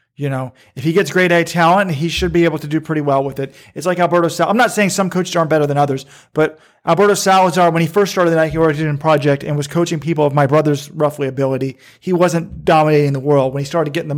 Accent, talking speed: American, 270 wpm